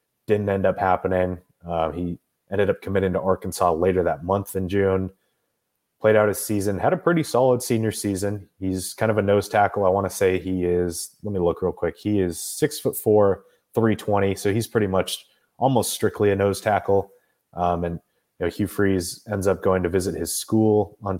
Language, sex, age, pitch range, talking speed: English, male, 30-49, 90-100 Hz, 205 wpm